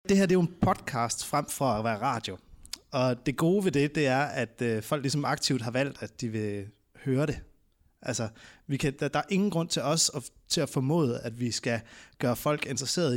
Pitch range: 110-145 Hz